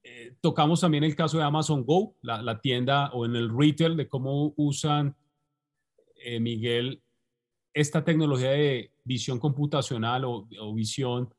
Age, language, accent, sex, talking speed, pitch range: 30-49, Spanish, Colombian, male, 150 wpm, 125-160 Hz